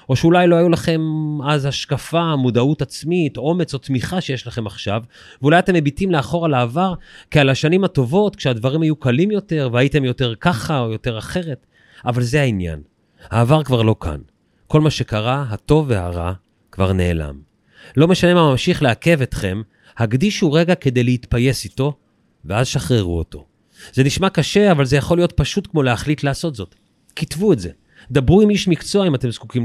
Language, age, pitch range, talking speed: Hebrew, 30-49, 115-165 Hz, 170 wpm